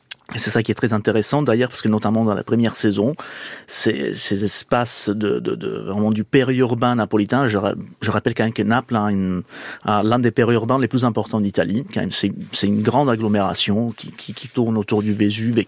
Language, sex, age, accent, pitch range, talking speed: French, male, 30-49, French, 105-120 Hz, 220 wpm